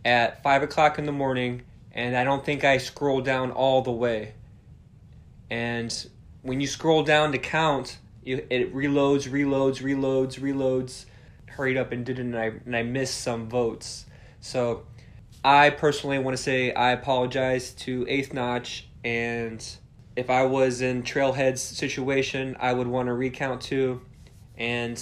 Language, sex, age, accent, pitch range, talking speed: English, male, 20-39, American, 120-140 Hz, 150 wpm